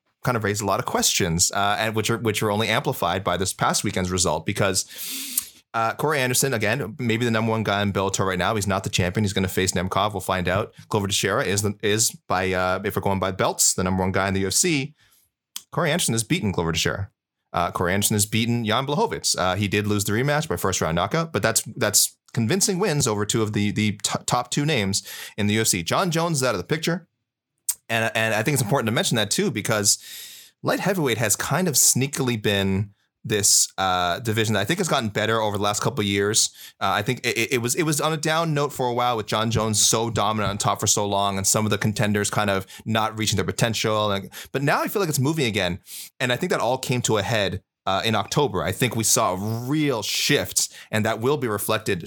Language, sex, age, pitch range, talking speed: English, male, 30-49, 100-125 Hz, 245 wpm